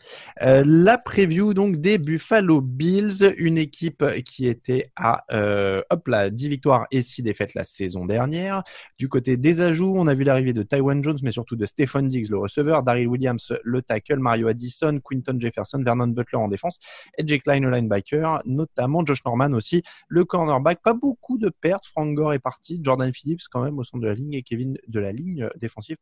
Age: 20-39